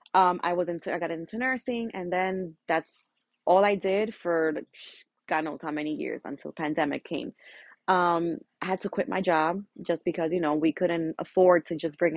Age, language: 20-39, English